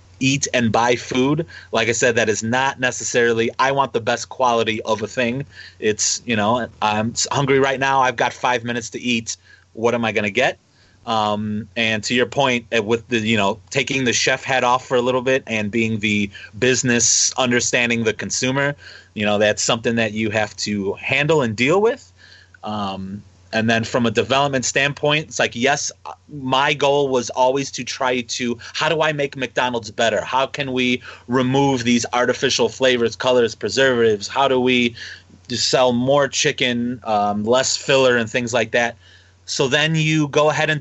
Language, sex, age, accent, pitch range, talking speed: English, male, 30-49, American, 115-140 Hz, 185 wpm